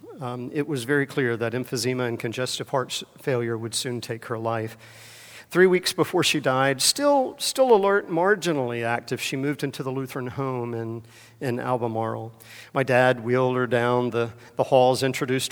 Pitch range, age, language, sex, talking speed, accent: 115-145 Hz, 50-69, English, male, 170 wpm, American